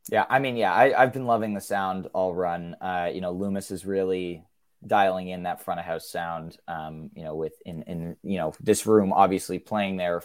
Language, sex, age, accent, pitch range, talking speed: English, male, 20-39, American, 90-115 Hz, 220 wpm